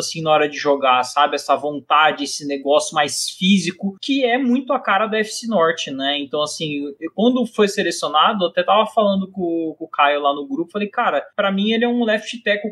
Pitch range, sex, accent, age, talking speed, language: 150-205 Hz, male, Brazilian, 20-39, 220 wpm, Portuguese